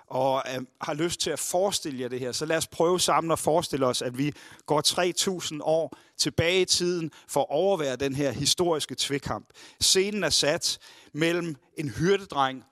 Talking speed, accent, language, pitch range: 185 wpm, native, Danish, 135-165 Hz